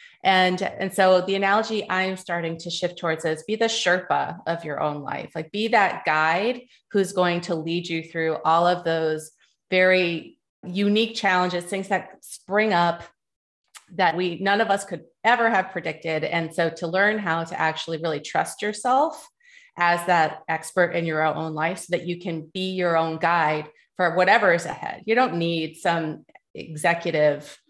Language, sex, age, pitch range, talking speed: English, female, 30-49, 160-195 Hz, 175 wpm